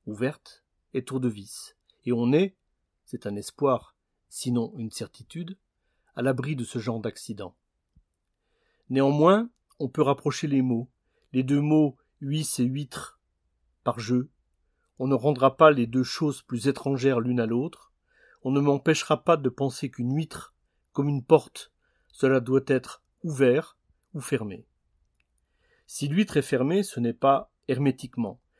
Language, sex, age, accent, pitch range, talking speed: French, male, 40-59, French, 120-145 Hz, 150 wpm